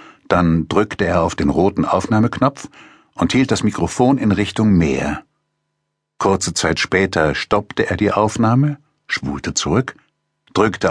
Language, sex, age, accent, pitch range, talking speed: German, male, 60-79, German, 90-120 Hz, 130 wpm